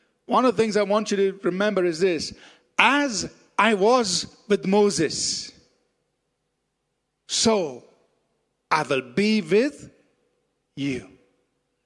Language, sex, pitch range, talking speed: English, male, 135-155 Hz, 110 wpm